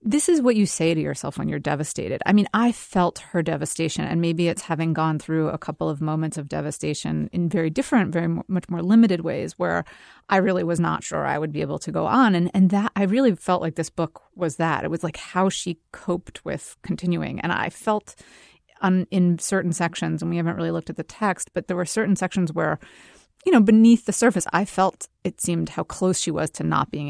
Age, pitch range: 30-49, 170-225 Hz